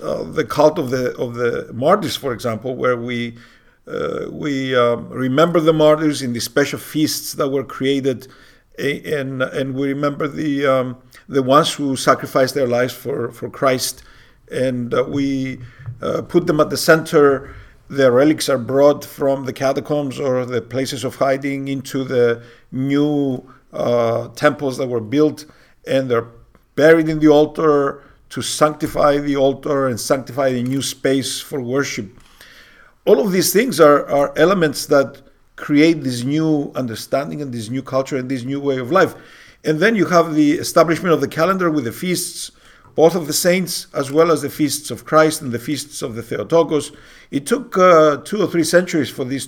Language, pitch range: English, 130-150 Hz